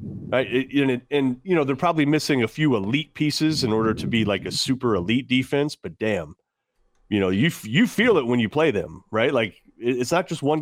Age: 30-49